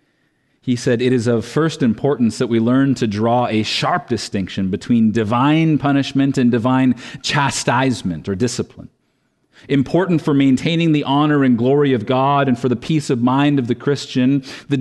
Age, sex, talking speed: 40-59, male, 170 wpm